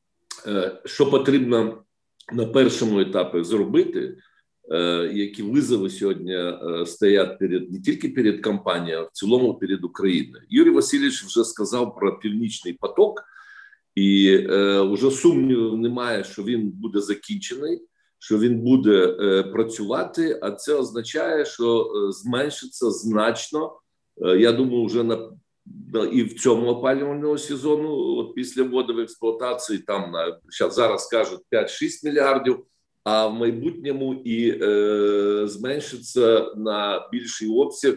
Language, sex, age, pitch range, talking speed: Ukrainian, male, 50-69, 105-155 Hz, 120 wpm